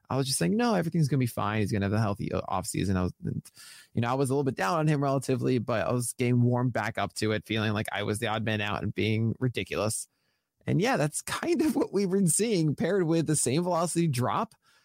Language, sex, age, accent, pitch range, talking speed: English, male, 20-39, American, 125-170 Hz, 255 wpm